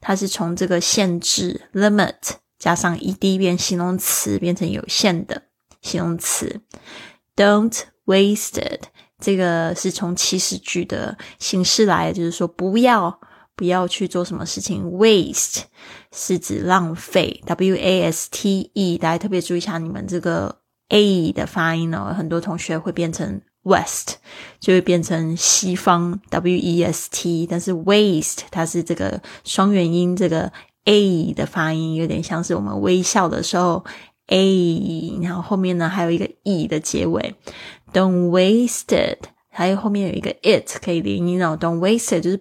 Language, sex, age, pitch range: Chinese, female, 20-39, 170-195 Hz